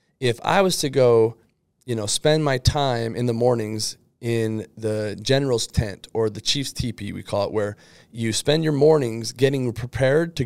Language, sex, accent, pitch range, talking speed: English, male, American, 115-140 Hz, 185 wpm